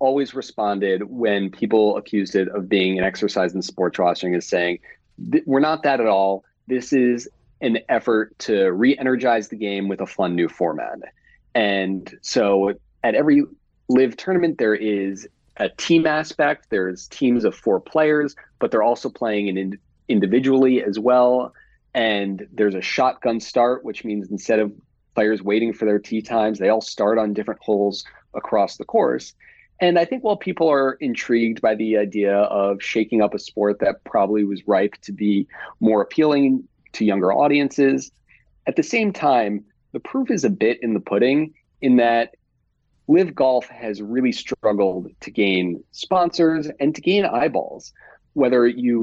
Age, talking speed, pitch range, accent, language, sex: 30-49, 165 wpm, 100-135 Hz, American, English, male